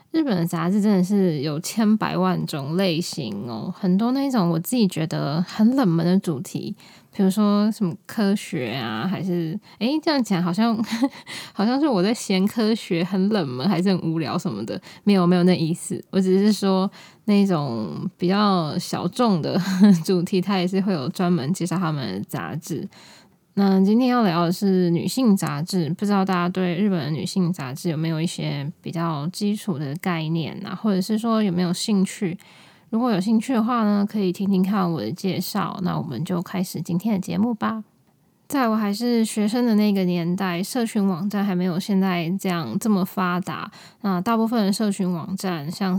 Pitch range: 175-205 Hz